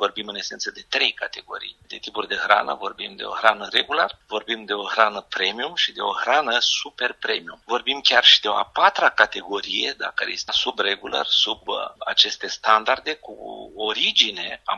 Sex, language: male, Romanian